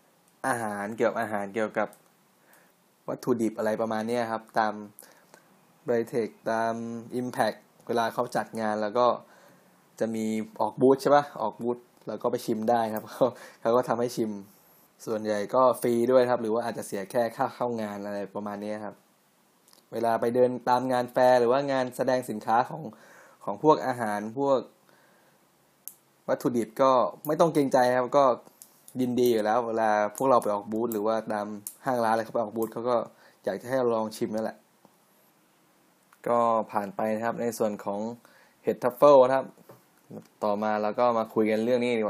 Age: 20-39